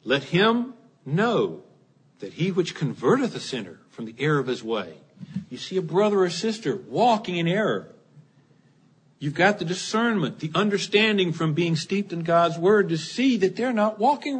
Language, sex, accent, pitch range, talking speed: English, male, American, 165-230 Hz, 175 wpm